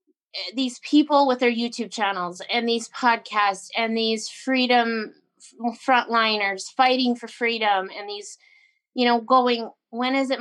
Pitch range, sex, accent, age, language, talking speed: 220-255 Hz, female, American, 20-39, English, 140 wpm